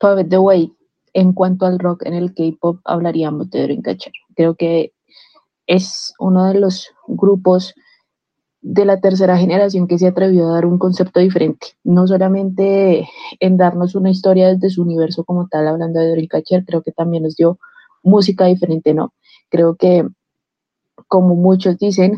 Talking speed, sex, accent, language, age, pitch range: 155 wpm, female, Colombian, Spanish, 20-39, 170-195 Hz